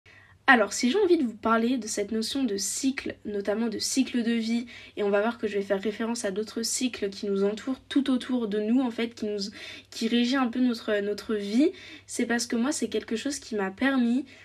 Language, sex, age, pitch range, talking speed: French, female, 20-39, 210-255 Hz, 235 wpm